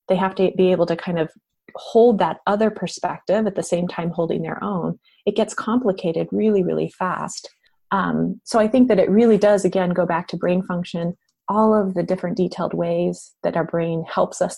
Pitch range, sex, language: 170-205 Hz, female, English